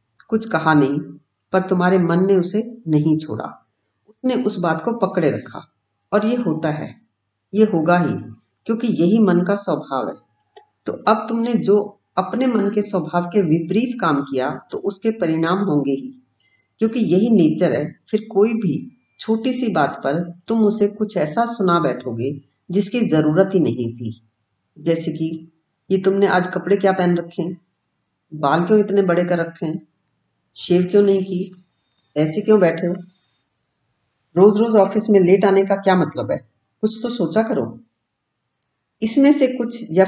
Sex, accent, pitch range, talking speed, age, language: female, native, 155-205 Hz, 165 wpm, 50-69, Hindi